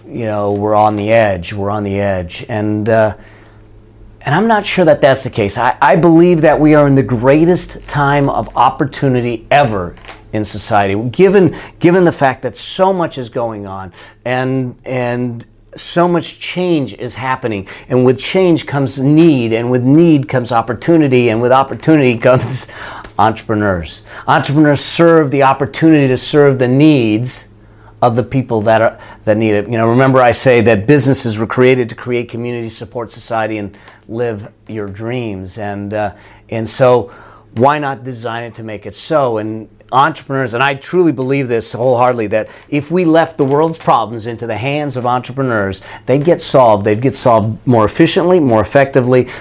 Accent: American